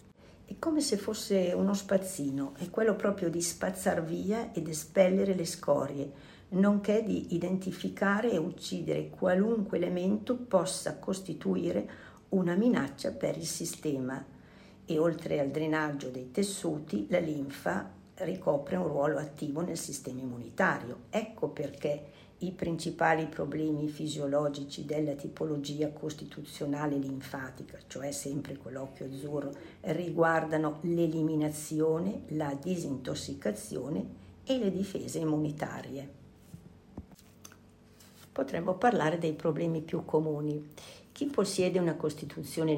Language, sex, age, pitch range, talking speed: Italian, female, 50-69, 145-185 Hz, 110 wpm